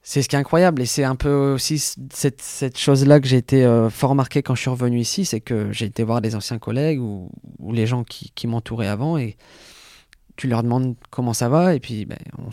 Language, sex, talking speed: French, male, 245 wpm